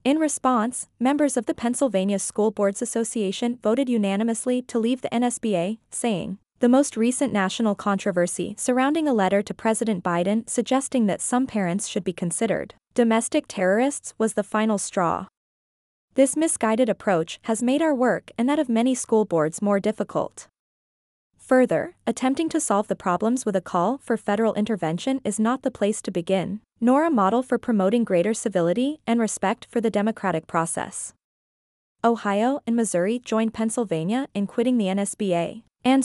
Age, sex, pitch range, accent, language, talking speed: 20-39, female, 200-250 Hz, American, English, 160 wpm